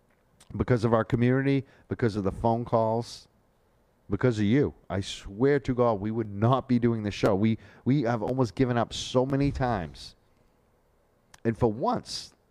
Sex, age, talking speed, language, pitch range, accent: male, 40-59, 170 wpm, English, 100-125 Hz, American